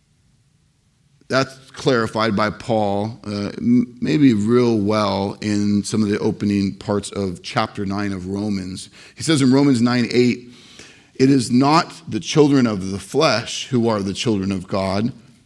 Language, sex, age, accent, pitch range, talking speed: English, male, 40-59, American, 100-130 Hz, 150 wpm